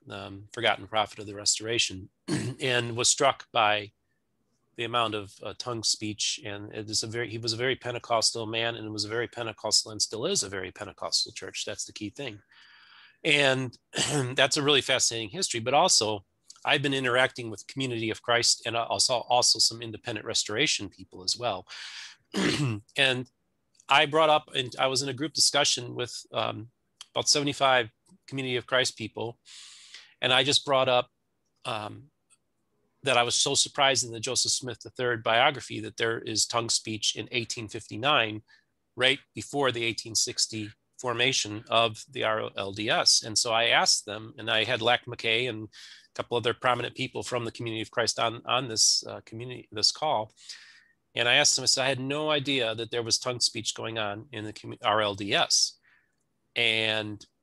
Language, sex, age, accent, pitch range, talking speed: English, male, 30-49, American, 110-130 Hz, 175 wpm